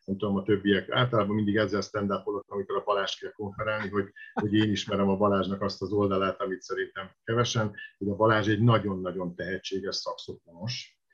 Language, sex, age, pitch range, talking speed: Hungarian, male, 50-69, 95-110 Hz, 170 wpm